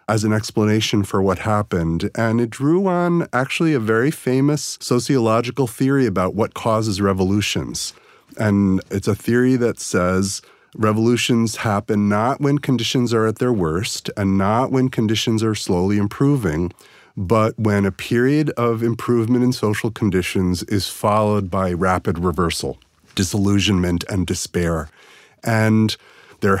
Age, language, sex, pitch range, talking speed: 40-59, English, male, 95-115 Hz, 140 wpm